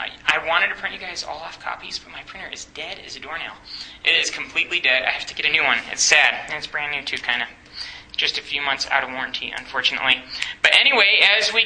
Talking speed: 250 wpm